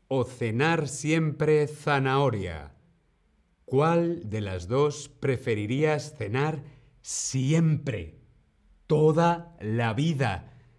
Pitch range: 100-150 Hz